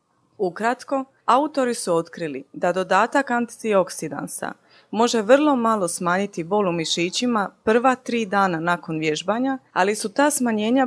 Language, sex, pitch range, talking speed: Croatian, female, 185-245 Hz, 125 wpm